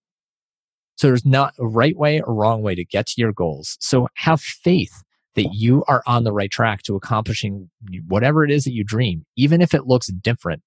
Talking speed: 210 wpm